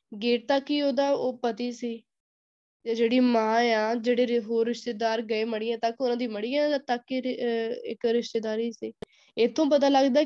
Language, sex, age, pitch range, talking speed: Punjabi, female, 10-29, 225-260 Hz, 150 wpm